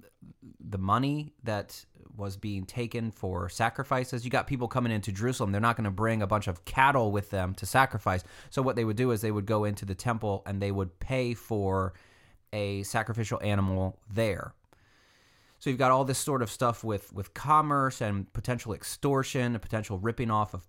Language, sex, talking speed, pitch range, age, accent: English, male, 190 wpm, 95-120 Hz, 30-49, American